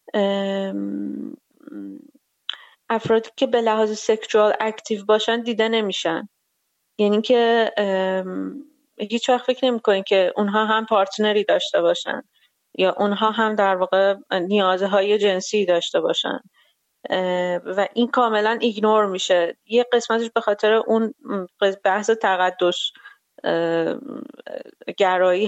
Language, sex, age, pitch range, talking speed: Persian, female, 30-49, 195-235 Hz, 100 wpm